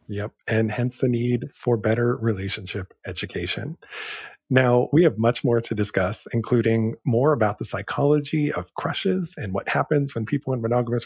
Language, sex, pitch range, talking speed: English, male, 110-135 Hz, 165 wpm